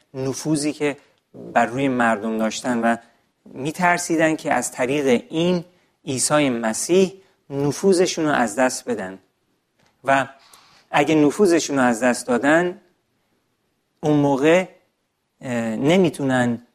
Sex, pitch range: male, 125-160 Hz